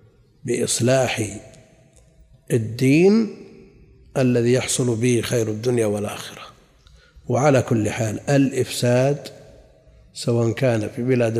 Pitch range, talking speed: 115-145 Hz, 85 wpm